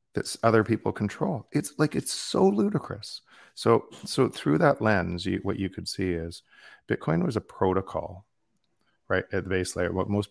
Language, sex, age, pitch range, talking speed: English, male, 40-59, 85-110 Hz, 180 wpm